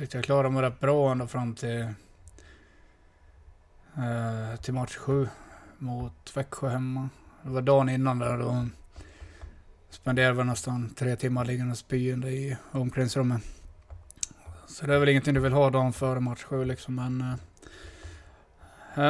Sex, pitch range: male, 100-135 Hz